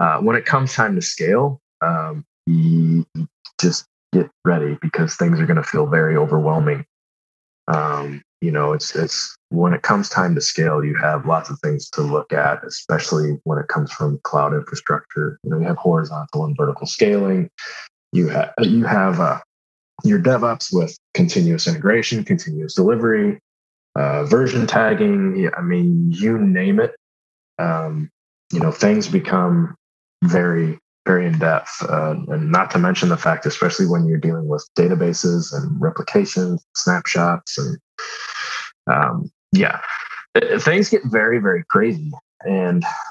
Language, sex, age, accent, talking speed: English, male, 30-49, American, 155 wpm